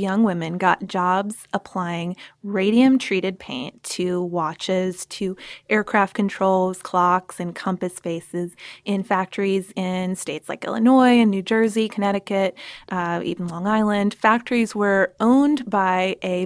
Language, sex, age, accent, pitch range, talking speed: English, female, 20-39, American, 185-220 Hz, 130 wpm